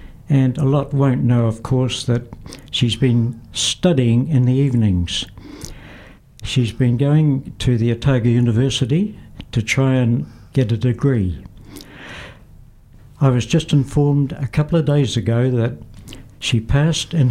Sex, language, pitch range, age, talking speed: male, English, 110-135 Hz, 60-79, 140 wpm